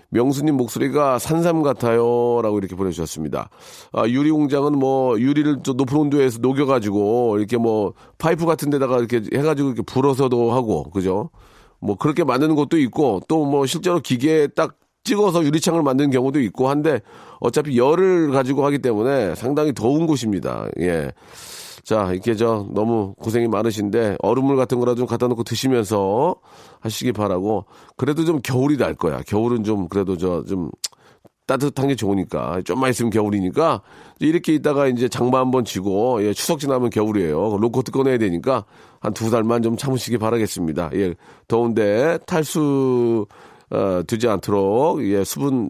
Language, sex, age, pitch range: Korean, male, 40-59, 105-140 Hz